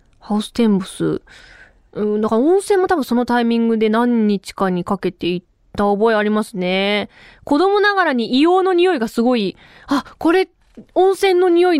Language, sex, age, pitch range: Japanese, female, 20-39, 210-330 Hz